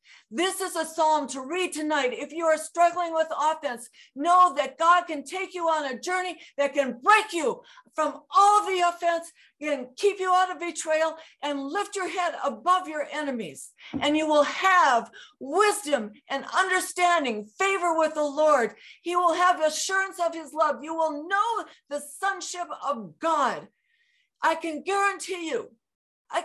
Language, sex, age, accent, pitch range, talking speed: English, female, 50-69, American, 230-350 Hz, 165 wpm